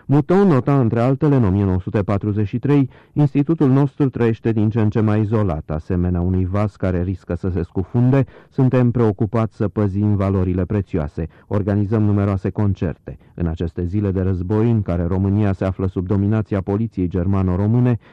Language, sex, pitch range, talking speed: Romanian, male, 90-115 Hz, 150 wpm